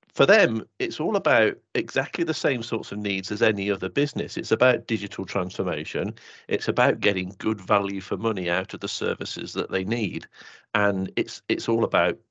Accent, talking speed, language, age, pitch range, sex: British, 185 wpm, English, 40-59, 100-115 Hz, male